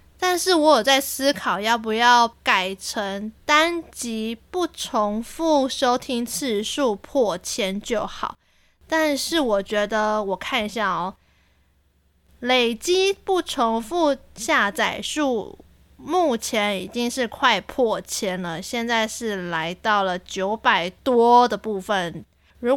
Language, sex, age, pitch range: Chinese, female, 20-39, 205-275 Hz